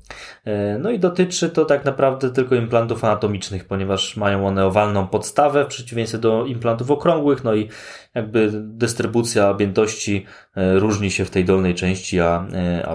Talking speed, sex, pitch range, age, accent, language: 145 wpm, male, 100-140 Hz, 20-39, native, Polish